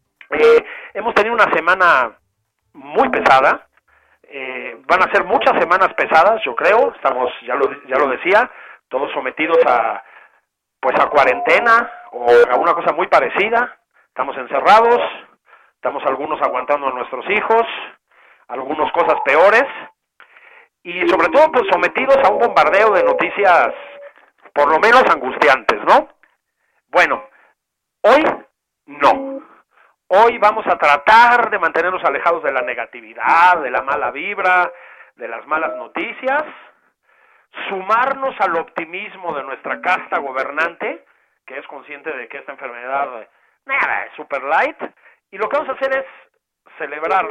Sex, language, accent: male, Spanish, Mexican